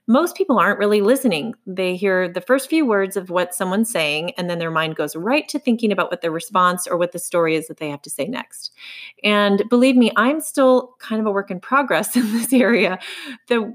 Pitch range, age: 180-225 Hz, 30-49